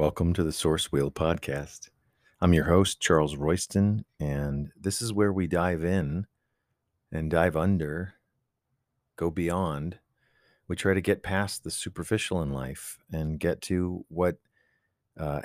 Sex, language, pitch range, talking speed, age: male, English, 80-100 Hz, 145 wpm, 40-59